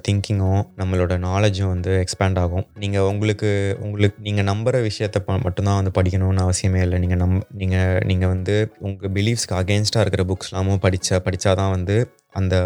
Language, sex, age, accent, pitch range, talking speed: Tamil, male, 20-39, native, 95-105 Hz, 145 wpm